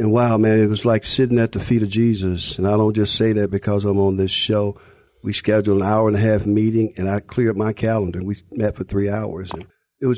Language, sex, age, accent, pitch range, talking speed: English, male, 50-69, American, 100-120 Hz, 260 wpm